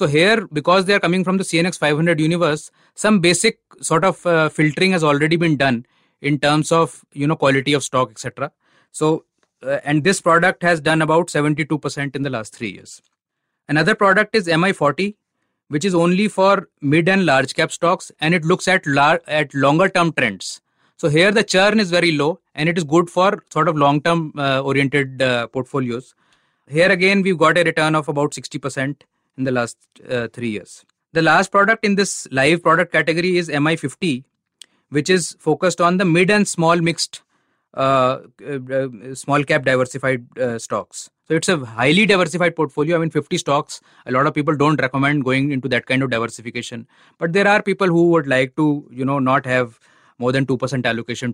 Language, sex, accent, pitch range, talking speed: English, male, Indian, 135-175 Hz, 195 wpm